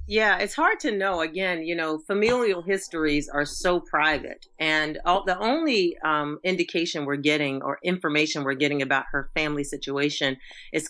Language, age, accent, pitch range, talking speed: English, 40-59, American, 140-170 Hz, 165 wpm